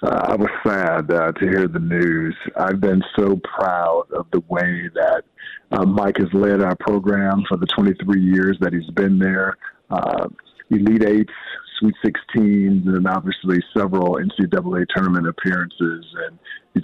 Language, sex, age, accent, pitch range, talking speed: English, male, 50-69, American, 95-105 Hz, 155 wpm